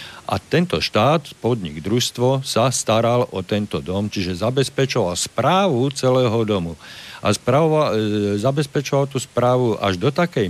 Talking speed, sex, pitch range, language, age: 130 wpm, male, 110-140 Hz, Slovak, 50-69